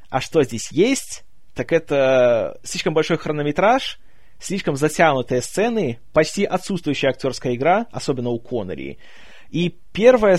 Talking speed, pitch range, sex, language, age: 120 wpm, 130-180 Hz, male, Russian, 20-39